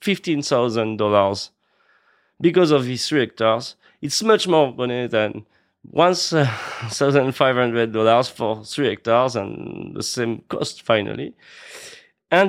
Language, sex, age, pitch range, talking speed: English, male, 30-49, 110-145 Hz, 100 wpm